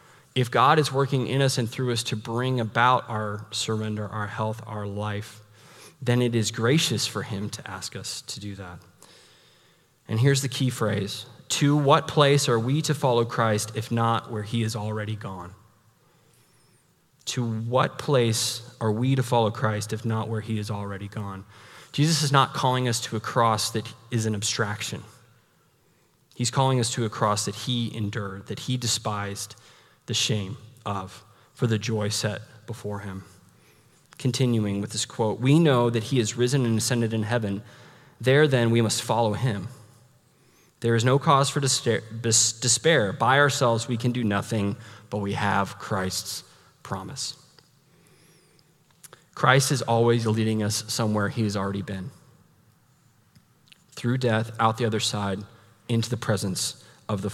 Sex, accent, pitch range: male, American, 105-130 Hz